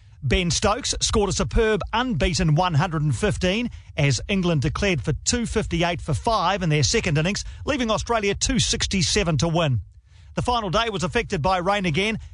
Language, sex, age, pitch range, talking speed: English, male, 40-59, 145-205 Hz, 150 wpm